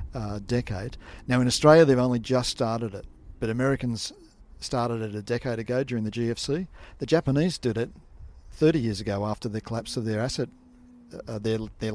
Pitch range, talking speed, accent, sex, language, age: 110-135 Hz, 180 wpm, Australian, male, English, 50-69